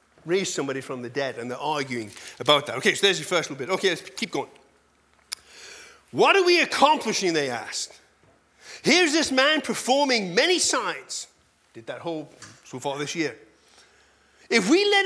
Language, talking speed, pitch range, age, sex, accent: English, 170 wpm, 190-315 Hz, 30-49, male, British